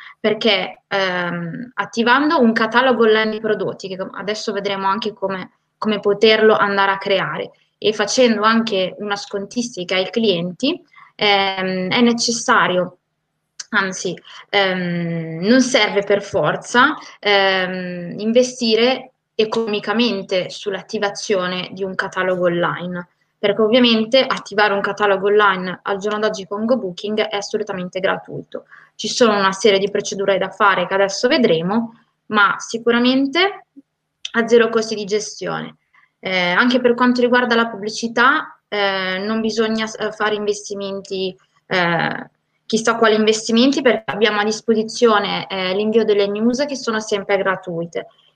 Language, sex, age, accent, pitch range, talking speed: Italian, female, 20-39, native, 195-230 Hz, 130 wpm